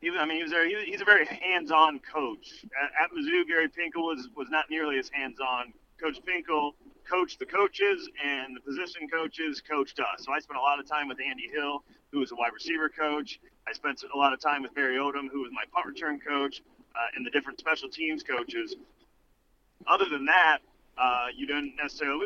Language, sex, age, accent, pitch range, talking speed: English, male, 40-59, American, 130-160 Hz, 215 wpm